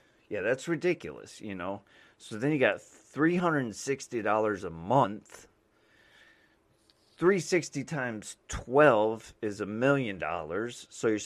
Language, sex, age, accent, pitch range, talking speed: English, male, 30-49, American, 100-135 Hz, 110 wpm